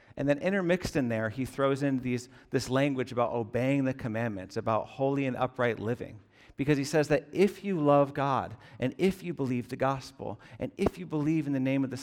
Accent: American